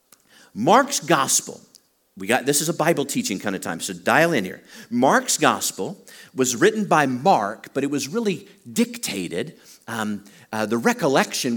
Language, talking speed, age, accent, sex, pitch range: English, 160 wpm, 50-69, American, male, 130-200 Hz